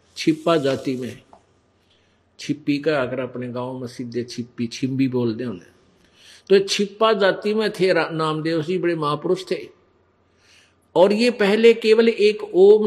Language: Hindi